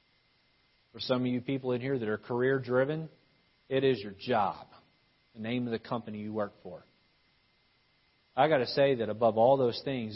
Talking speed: 185 wpm